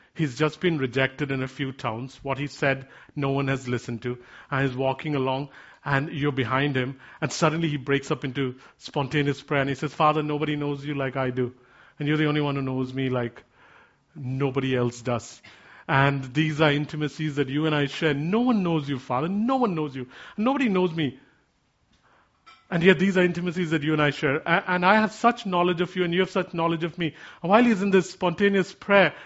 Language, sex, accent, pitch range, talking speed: English, male, Indian, 140-205 Hz, 215 wpm